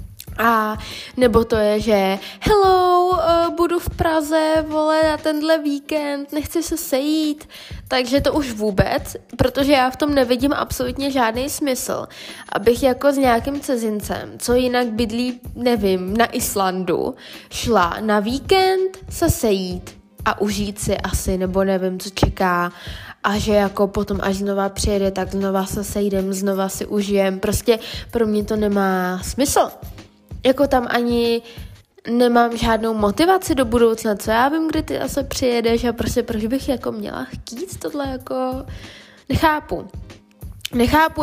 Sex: female